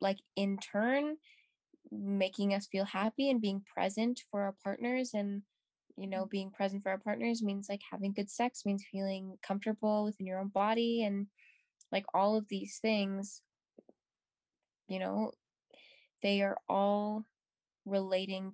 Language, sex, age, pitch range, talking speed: English, female, 10-29, 185-215 Hz, 145 wpm